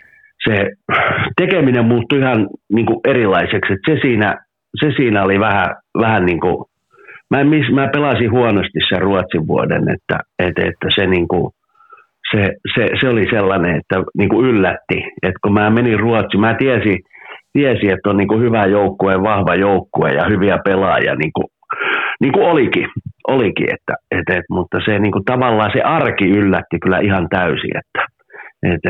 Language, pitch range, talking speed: Finnish, 95-120 Hz, 165 wpm